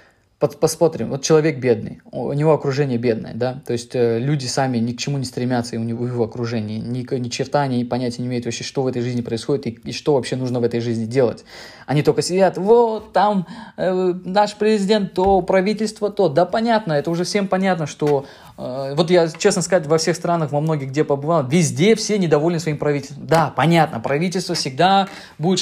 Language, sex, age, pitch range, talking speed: Russian, male, 20-39, 130-175 Hz, 200 wpm